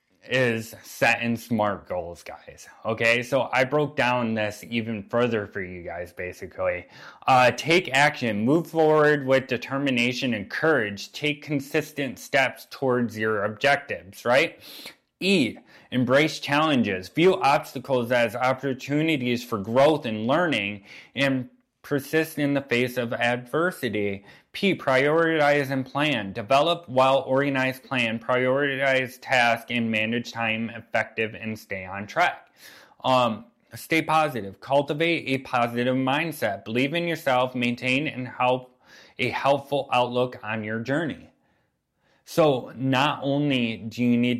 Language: English